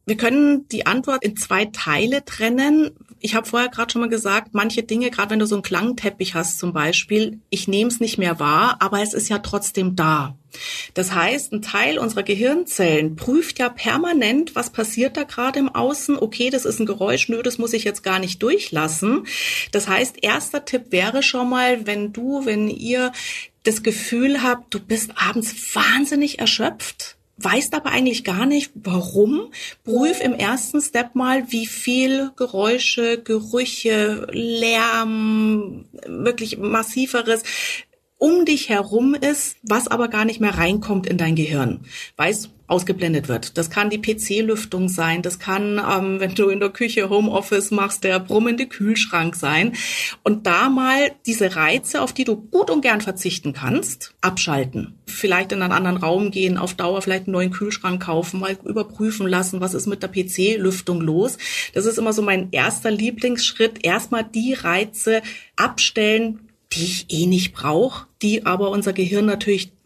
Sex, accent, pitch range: female, German, 190-245 Hz